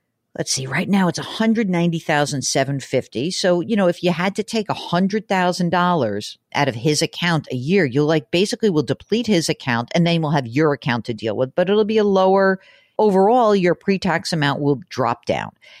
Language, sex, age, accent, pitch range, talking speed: English, female, 50-69, American, 140-195 Hz, 185 wpm